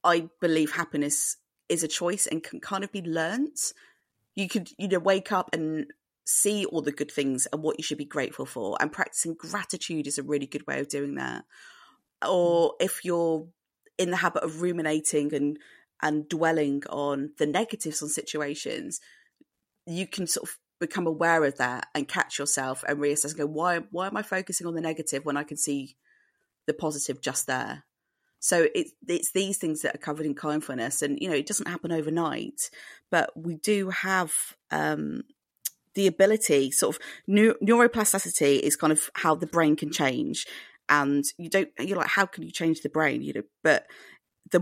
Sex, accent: female, British